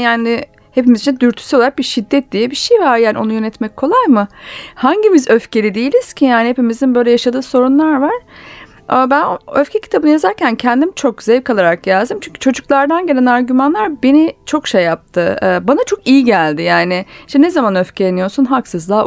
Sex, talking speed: female, 170 wpm